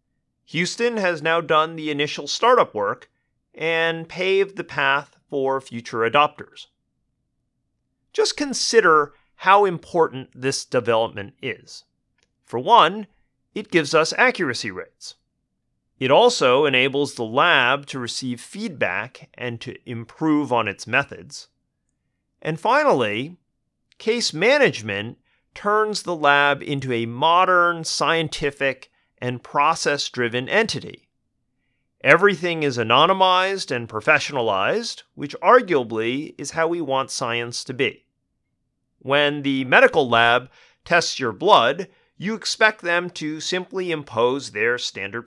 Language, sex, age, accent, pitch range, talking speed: English, male, 30-49, American, 125-180 Hz, 115 wpm